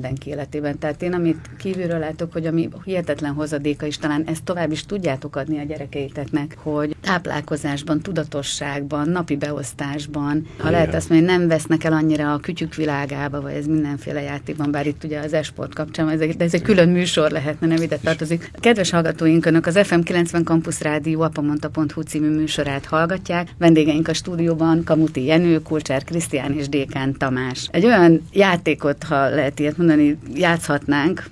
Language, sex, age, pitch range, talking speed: Hungarian, female, 30-49, 140-165 Hz, 155 wpm